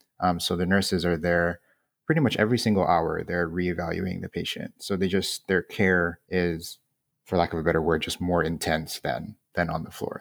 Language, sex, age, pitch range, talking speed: English, male, 30-49, 85-95 Hz, 205 wpm